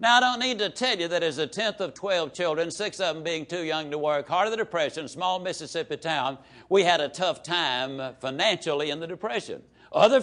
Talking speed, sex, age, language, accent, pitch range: 230 wpm, male, 60-79, English, American, 165-215 Hz